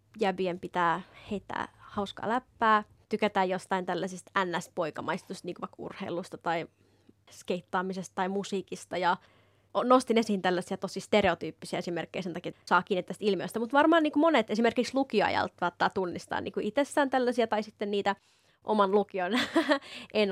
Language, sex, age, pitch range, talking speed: Finnish, female, 20-39, 180-215 Hz, 135 wpm